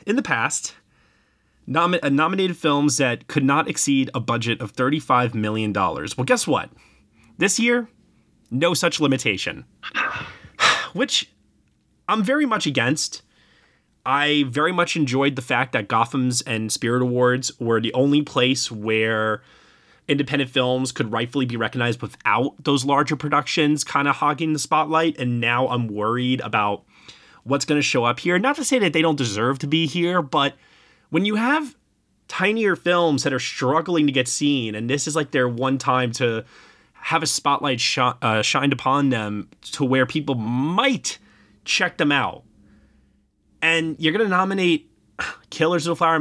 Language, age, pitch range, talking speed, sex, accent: English, 30-49, 125-165 Hz, 155 wpm, male, American